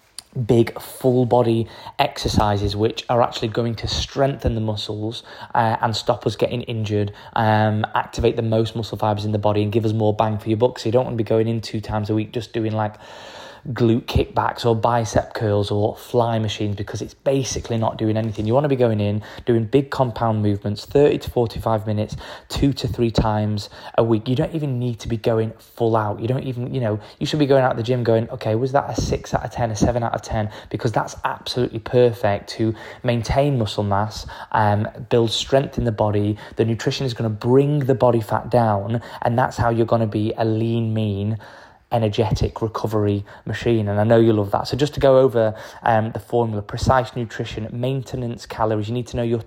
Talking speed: 215 wpm